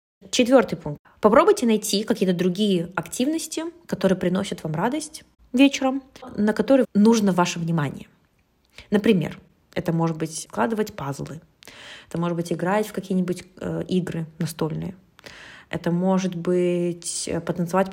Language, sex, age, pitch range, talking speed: Russian, female, 20-39, 170-215 Hz, 115 wpm